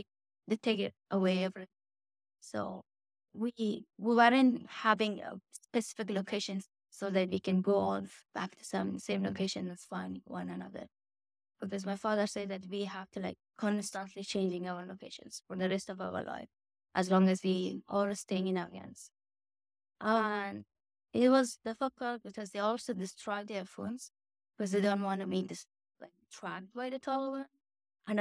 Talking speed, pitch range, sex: 170 wpm, 190-235 Hz, female